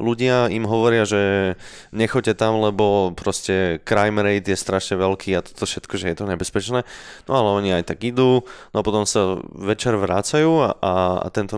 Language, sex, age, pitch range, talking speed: Slovak, male, 20-39, 95-115 Hz, 180 wpm